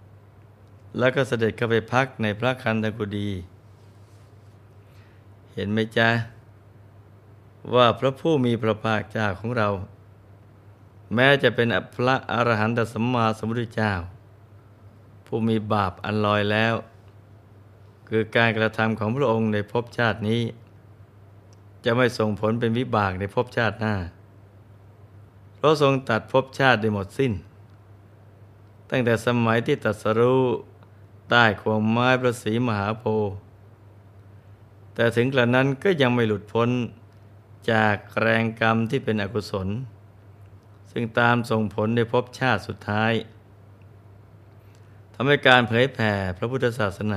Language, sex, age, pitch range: Thai, male, 20-39, 100-115 Hz